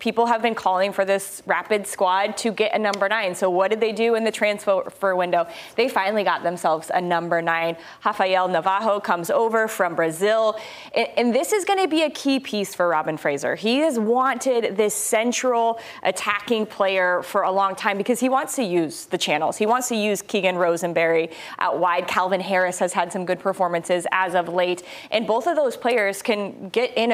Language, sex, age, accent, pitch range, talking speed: English, female, 20-39, American, 180-225 Hz, 200 wpm